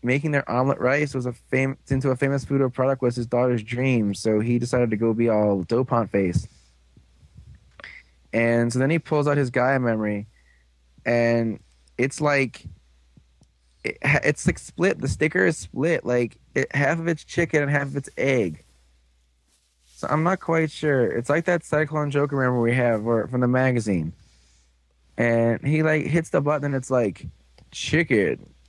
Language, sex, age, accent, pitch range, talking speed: English, male, 20-39, American, 100-140 Hz, 175 wpm